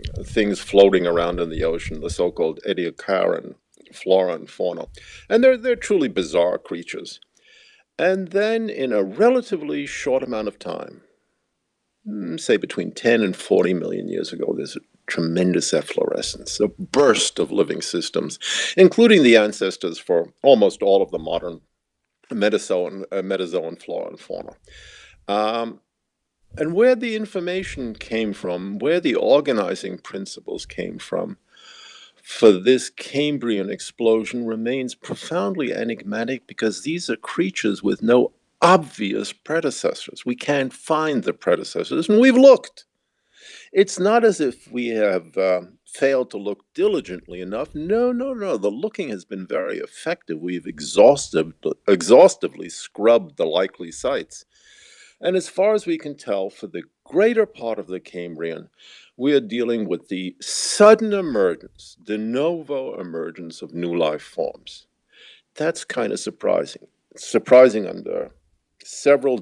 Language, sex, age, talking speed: English, male, 50-69, 135 wpm